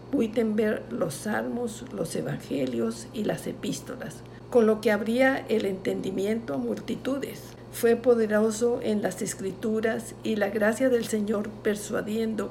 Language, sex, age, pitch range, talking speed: Spanish, female, 50-69, 205-240 Hz, 130 wpm